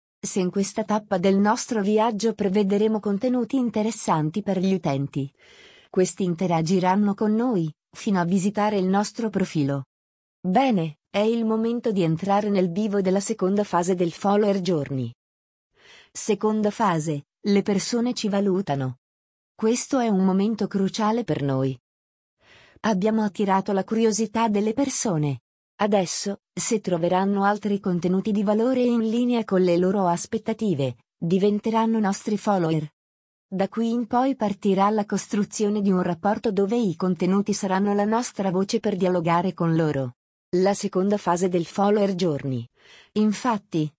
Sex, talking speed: female, 135 wpm